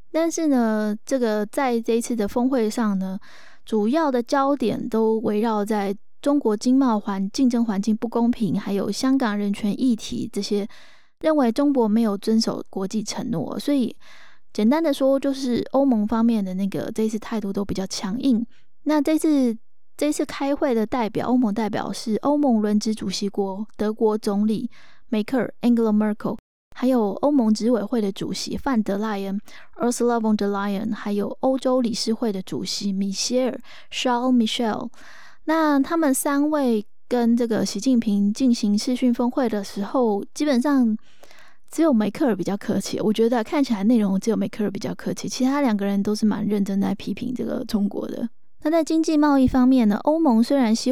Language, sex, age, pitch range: Chinese, female, 20-39, 210-260 Hz